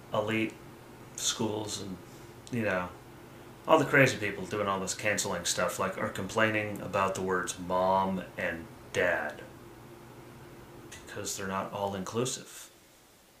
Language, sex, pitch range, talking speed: English, male, 95-115 Hz, 120 wpm